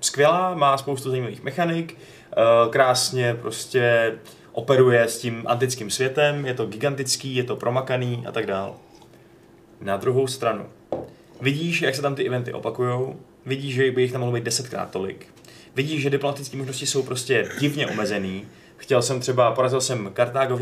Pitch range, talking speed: 120-135 Hz, 155 wpm